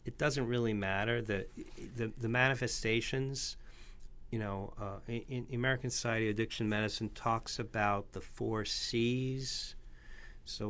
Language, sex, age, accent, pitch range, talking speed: English, male, 50-69, American, 90-120 Hz, 130 wpm